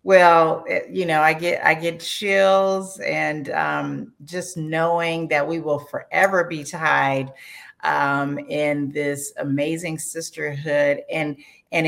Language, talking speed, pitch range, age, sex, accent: English, 125 wpm, 145-185 Hz, 40-59, female, American